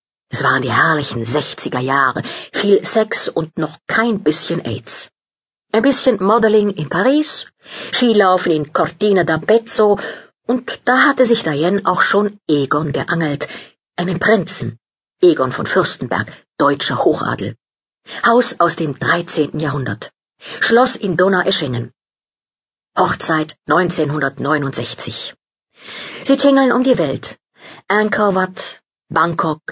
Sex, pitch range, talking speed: female, 150-220 Hz, 110 wpm